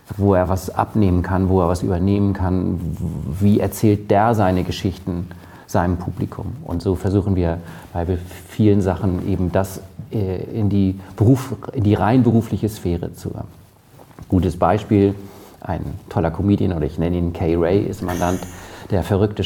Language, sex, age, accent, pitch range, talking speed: German, male, 50-69, German, 90-105 Hz, 155 wpm